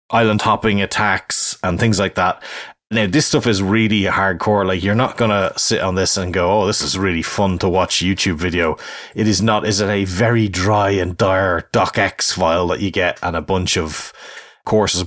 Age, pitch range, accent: 30-49, 90-105 Hz, Irish